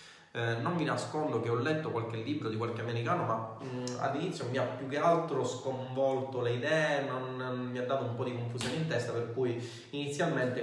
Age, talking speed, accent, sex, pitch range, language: 20-39, 205 wpm, native, male, 115-140 Hz, Italian